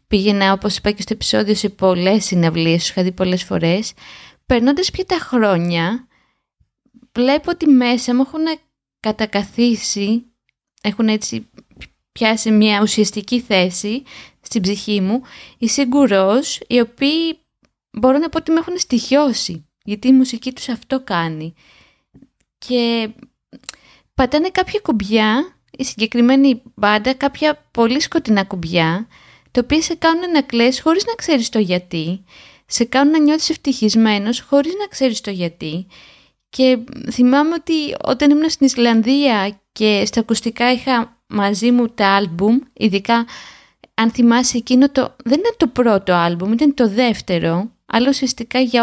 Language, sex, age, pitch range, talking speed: Greek, female, 20-39, 205-270 Hz, 140 wpm